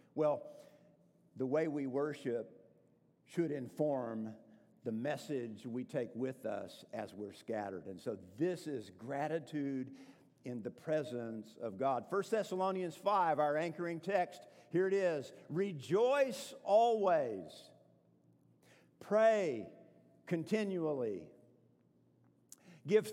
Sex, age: male, 50-69